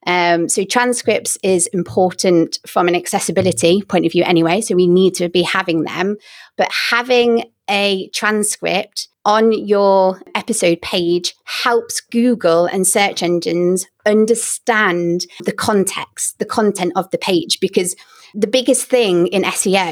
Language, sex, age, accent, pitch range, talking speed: English, female, 30-49, British, 175-230 Hz, 140 wpm